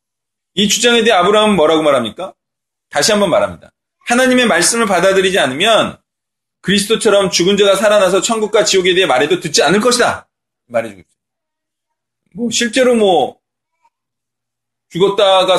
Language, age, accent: Korean, 30-49, native